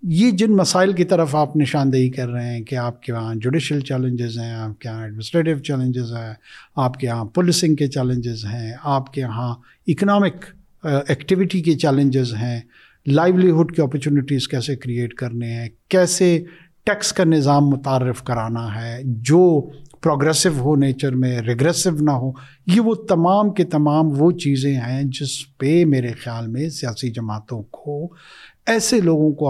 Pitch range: 125-165 Hz